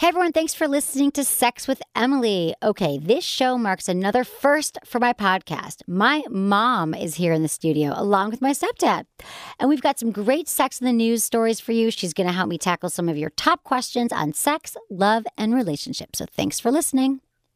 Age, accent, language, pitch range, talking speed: 40-59, American, English, 190-290 Hz, 210 wpm